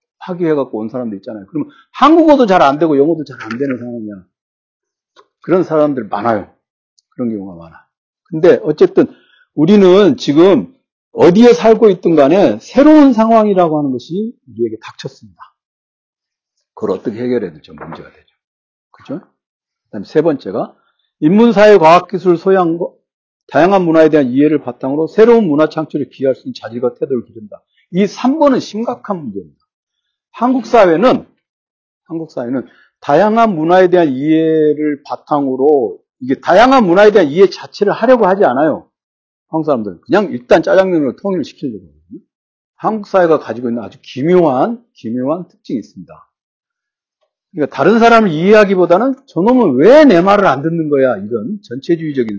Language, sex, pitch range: Korean, male, 140-235 Hz